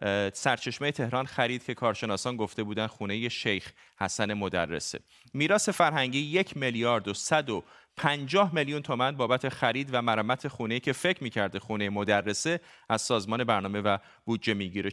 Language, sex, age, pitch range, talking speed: Persian, male, 30-49, 115-145 Hz, 150 wpm